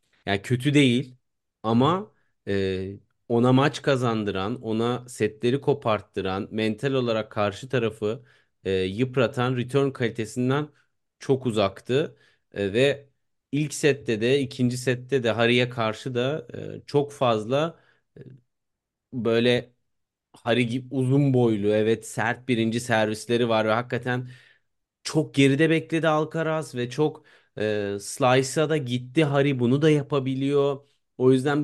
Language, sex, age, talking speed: Turkish, male, 30-49, 120 wpm